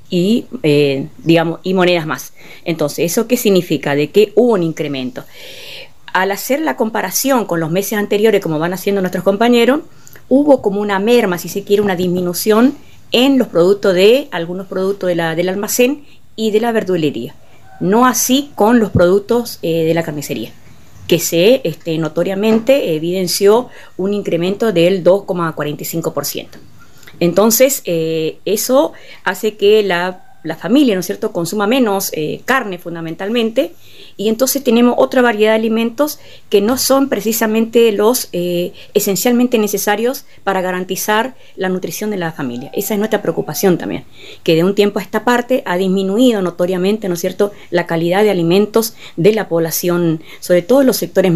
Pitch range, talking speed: 170-225 Hz, 155 wpm